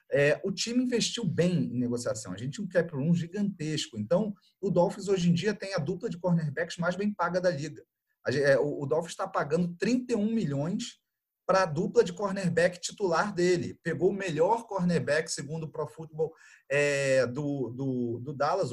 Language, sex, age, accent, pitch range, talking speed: Portuguese, male, 30-49, Brazilian, 140-195 Hz, 190 wpm